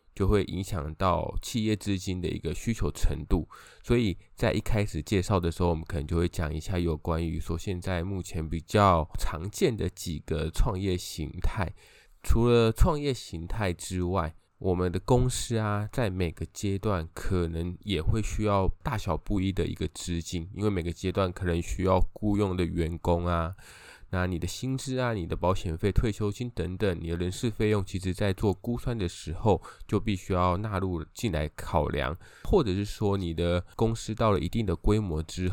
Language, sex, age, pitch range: Chinese, male, 20-39, 85-105 Hz